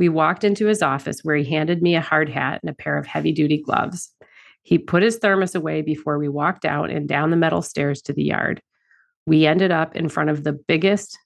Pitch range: 150-180 Hz